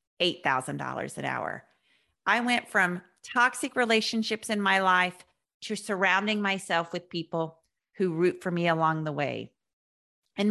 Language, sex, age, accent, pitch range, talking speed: English, female, 50-69, American, 155-215 Hz, 130 wpm